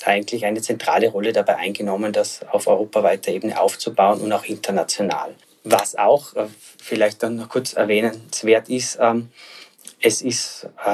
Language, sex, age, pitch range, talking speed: German, male, 20-39, 110-130 Hz, 130 wpm